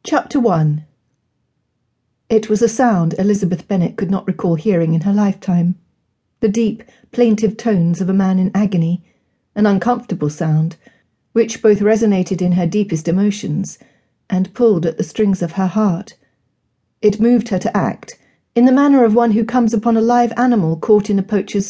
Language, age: English, 40-59